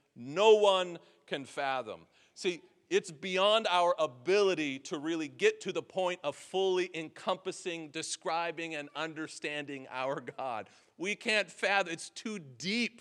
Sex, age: male, 40-59